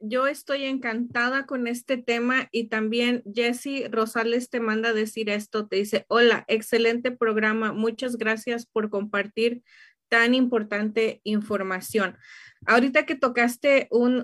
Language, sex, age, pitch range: Spanish, female, 30-49, 220-250 Hz